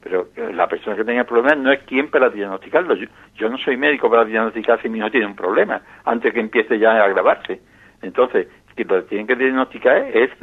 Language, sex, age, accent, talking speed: Spanish, male, 60-79, Spanish, 220 wpm